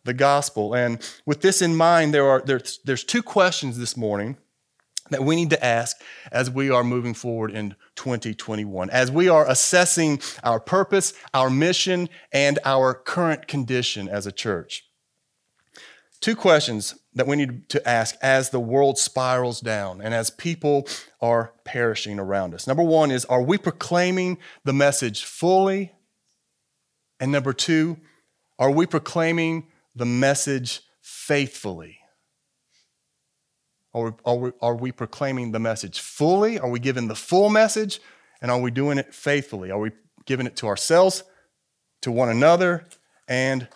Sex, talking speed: male, 150 wpm